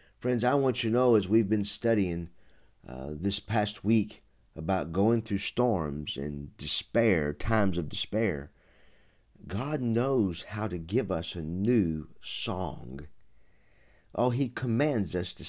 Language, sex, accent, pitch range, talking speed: English, male, American, 95-130 Hz, 145 wpm